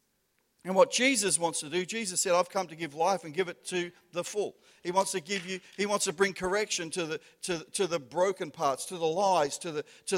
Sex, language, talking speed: male, English, 250 wpm